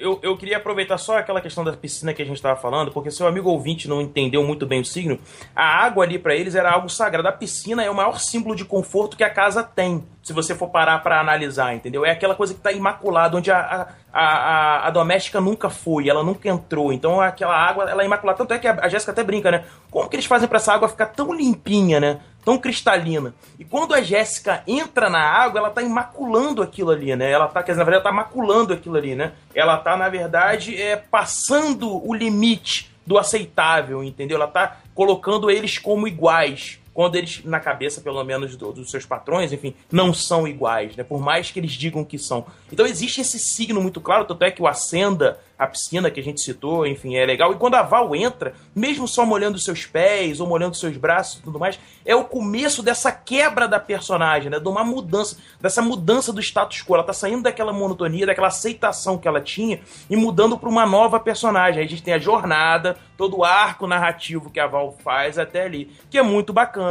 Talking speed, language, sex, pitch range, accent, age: 225 wpm, Portuguese, male, 160-215 Hz, Brazilian, 20-39